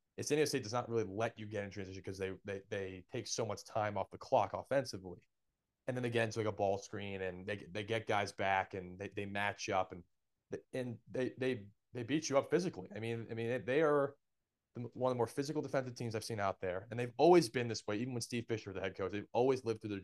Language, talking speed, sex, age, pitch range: English, 265 wpm, male, 30-49, 100-125 Hz